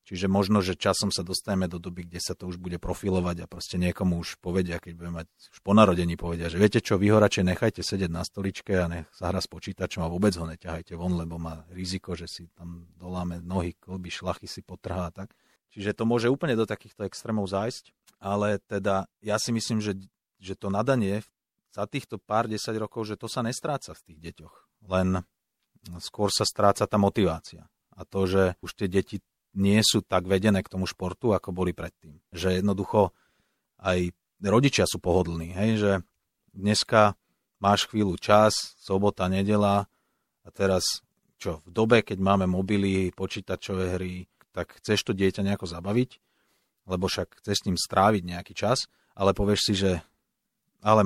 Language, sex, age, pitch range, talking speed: Slovak, male, 40-59, 90-105 Hz, 180 wpm